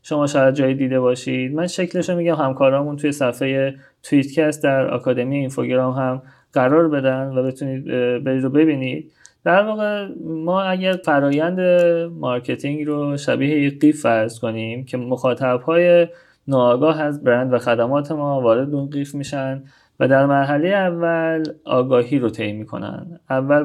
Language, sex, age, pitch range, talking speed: Persian, male, 20-39, 130-170 Hz, 140 wpm